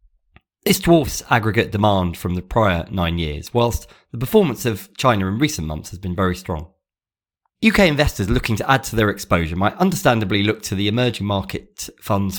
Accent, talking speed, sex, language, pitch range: British, 180 wpm, male, English, 90-125 Hz